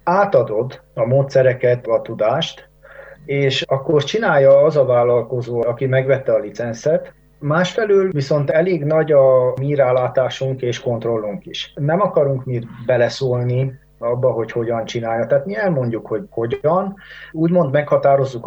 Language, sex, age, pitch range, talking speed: Hungarian, male, 30-49, 120-145 Hz, 125 wpm